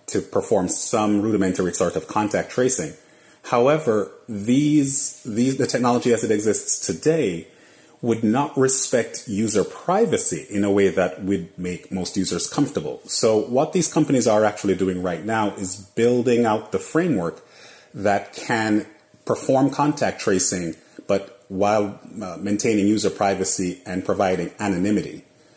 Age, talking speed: 30-49, 140 wpm